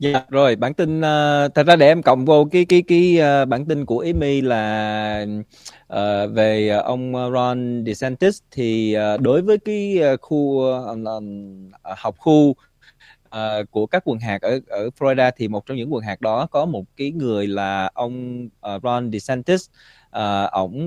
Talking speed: 180 wpm